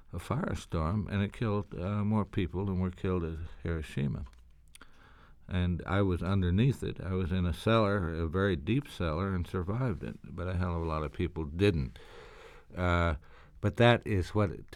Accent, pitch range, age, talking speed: American, 85-105 Hz, 60-79, 185 wpm